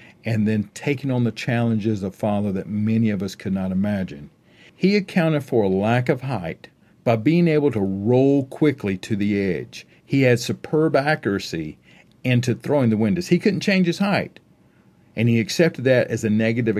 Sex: male